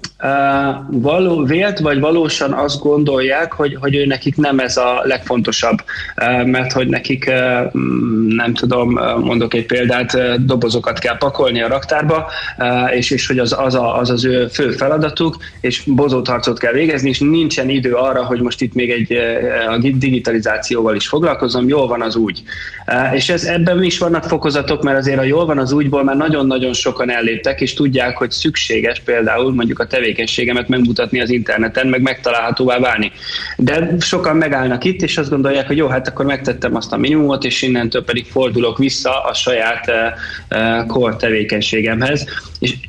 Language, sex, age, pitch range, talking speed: Hungarian, male, 20-39, 125-145 Hz, 160 wpm